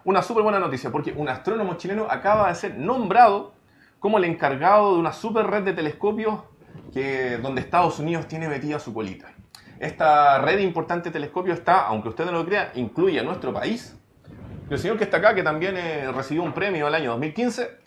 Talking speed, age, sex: 200 wpm, 30-49, male